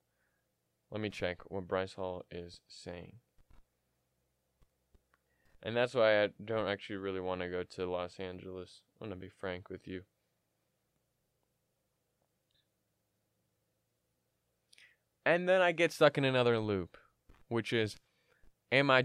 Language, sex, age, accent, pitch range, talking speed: English, male, 20-39, American, 95-130 Hz, 125 wpm